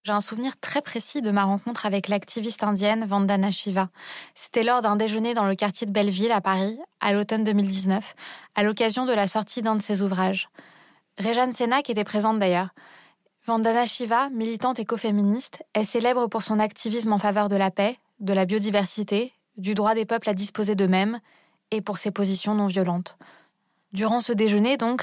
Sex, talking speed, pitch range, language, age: female, 175 wpm, 200-235 Hz, French, 20-39